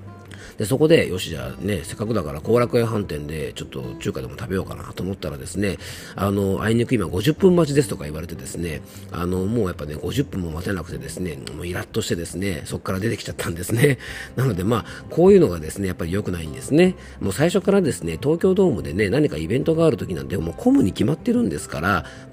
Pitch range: 85-125 Hz